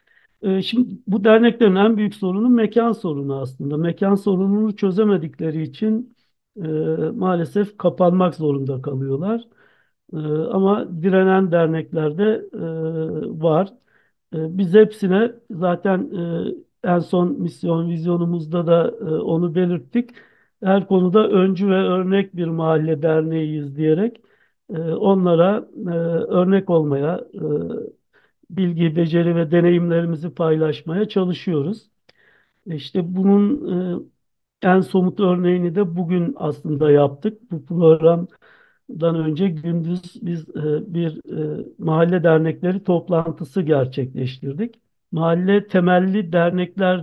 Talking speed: 95 wpm